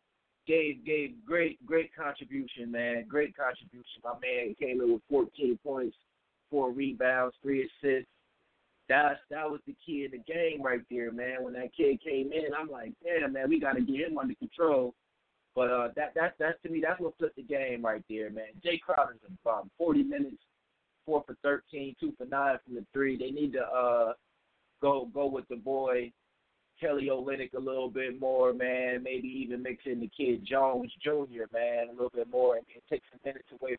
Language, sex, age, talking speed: English, male, 30-49, 195 wpm